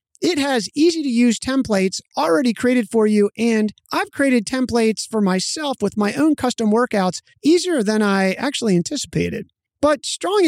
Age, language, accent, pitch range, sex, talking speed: 30-49, English, American, 195-260 Hz, male, 150 wpm